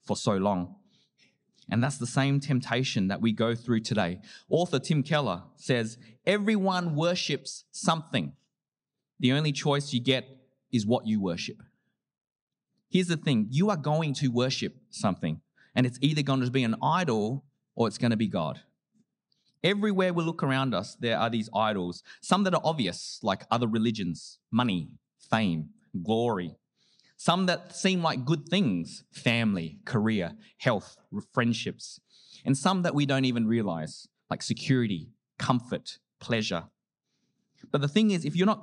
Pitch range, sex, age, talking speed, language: 115-160 Hz, male, 30-49, 155 wpm, English